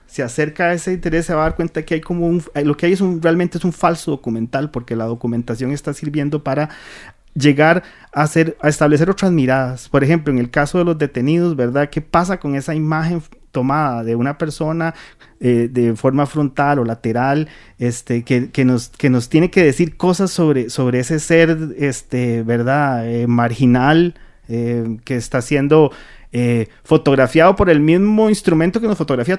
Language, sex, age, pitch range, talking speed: English, male, 30-49, 125-165 Hz, 190 wpm